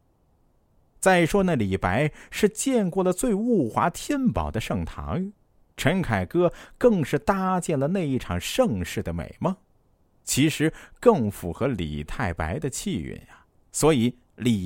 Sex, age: male, 50-69